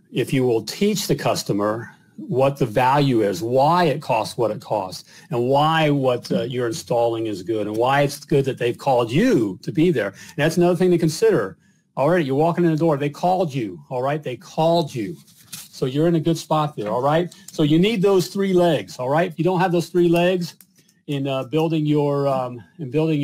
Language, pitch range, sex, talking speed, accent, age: English, 140-180 Hz, male, 225 wpm, American, 40-59